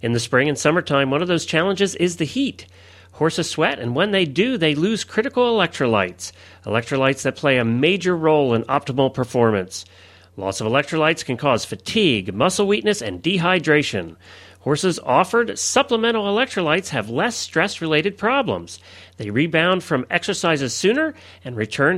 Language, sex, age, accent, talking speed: English, male, 40-59, American, 155 wpm